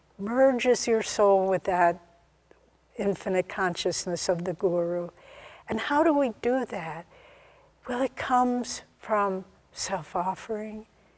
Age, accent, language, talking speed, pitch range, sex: 60-79, American, English, 115 wpm, 175-225 Hz, female